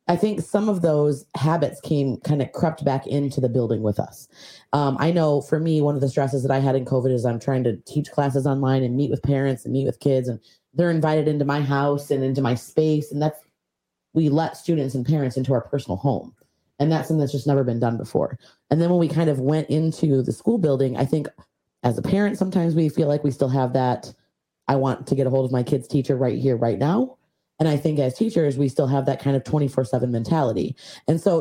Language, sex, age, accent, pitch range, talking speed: English, female, 30-49, American, 130-155 Hz, 245 wpm